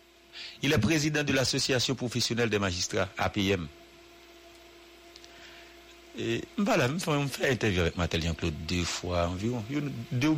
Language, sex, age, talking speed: English, male, 50-69, 125 wpm